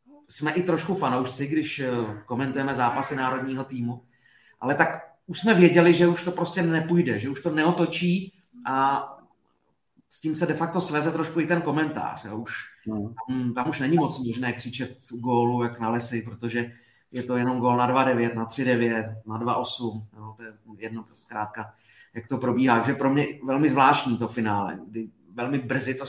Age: 30-49